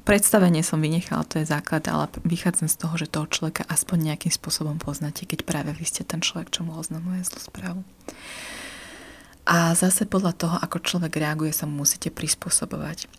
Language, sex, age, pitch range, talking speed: Slovak, female, 30-49, 155-180 Hz, 180 wpm